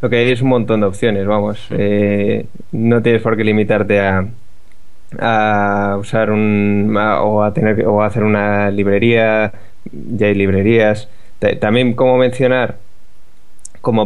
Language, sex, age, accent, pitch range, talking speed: Spanish, male, 20-39, Spanish, 105-115 Hz, 155 wpm